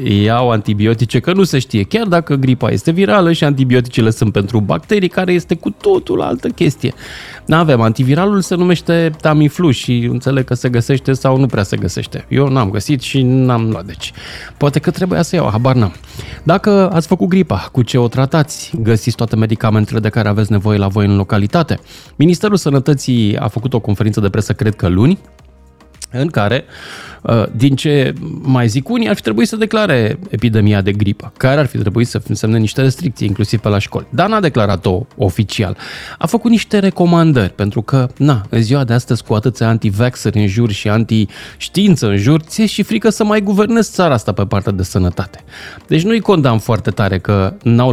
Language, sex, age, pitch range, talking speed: Romanian, male, 20-39, 110-165 Hz, 190 wpm